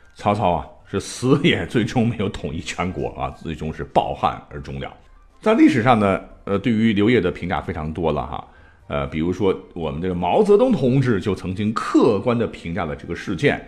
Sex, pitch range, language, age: male, 75-120 Hz, Chinese, 50-69